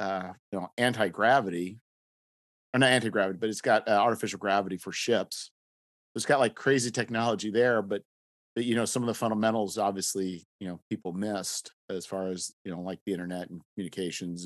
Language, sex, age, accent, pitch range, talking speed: English, male, 40-59, American, 85-110 Hz, 185 wpm